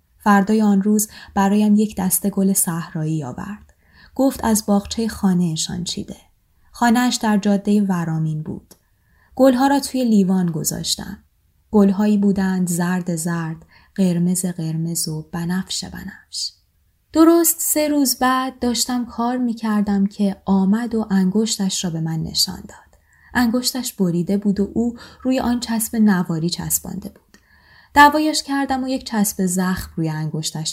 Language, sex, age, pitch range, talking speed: Persian, female, 20-39, 175-215 Hz, 135 wpm